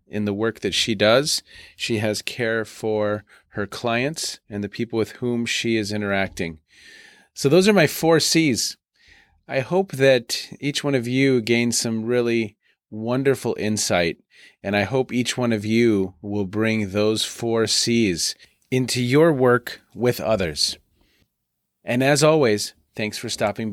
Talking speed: 155 wpm